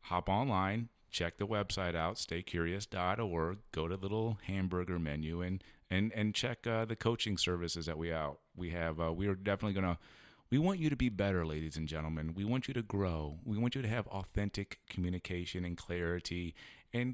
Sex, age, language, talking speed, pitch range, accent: male, 30-49, English, 195 wpm, 85-105 Hz, American